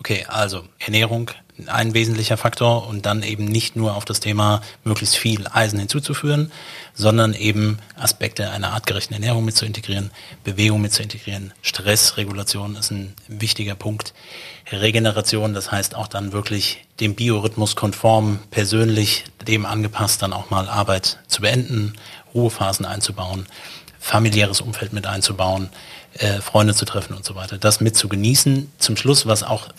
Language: German